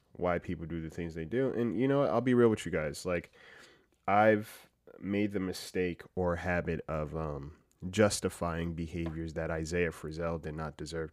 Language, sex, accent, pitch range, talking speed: English, male, American, 80-95 Hz, 180 wpm